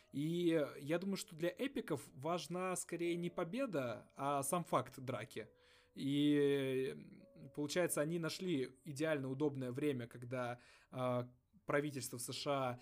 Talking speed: 115 wpm